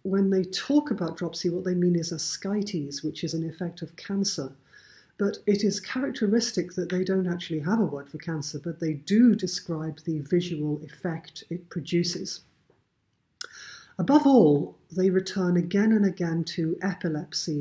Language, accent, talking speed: English, British, 160 wpm